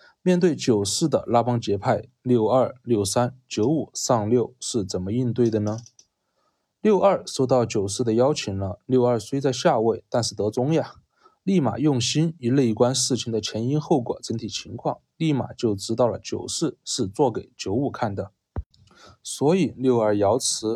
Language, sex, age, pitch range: Chinese, male, 20-39, 110-140 Hz